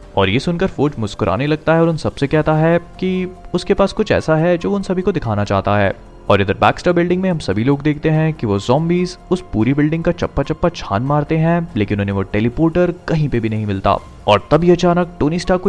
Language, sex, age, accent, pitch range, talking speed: Hindi, male, 30-49, native, 110-175 Hz, 120 wpm